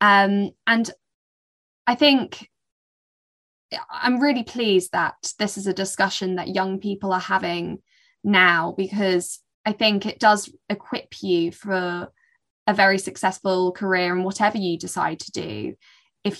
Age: 10-29